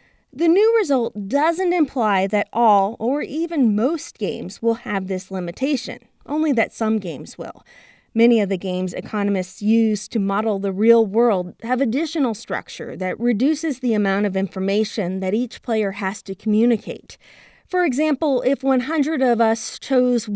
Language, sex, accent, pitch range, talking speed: English, female, American, 200-270 Hz, 155 wpm